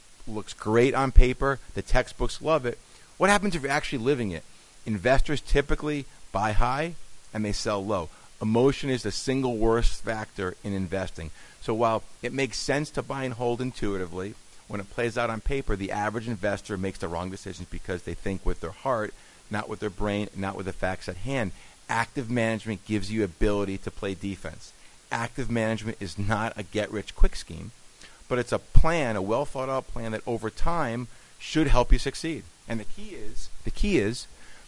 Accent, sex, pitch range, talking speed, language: American, male, 100-130 Hz, 185 wpm, English